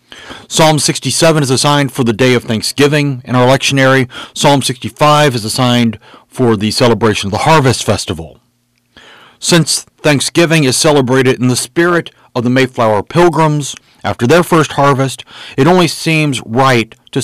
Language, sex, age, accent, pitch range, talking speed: English, male, 40-59, American, 110-145 Hz, 150 wpm